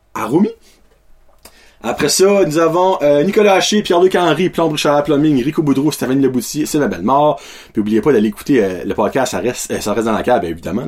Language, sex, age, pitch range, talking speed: French, male, 30-49, 115-175 Hz, 210 wpm